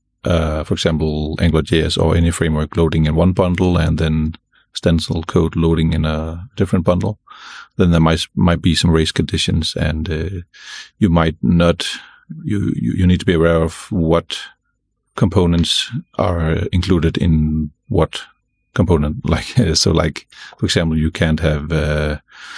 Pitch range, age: 80-90 Hz, 40-59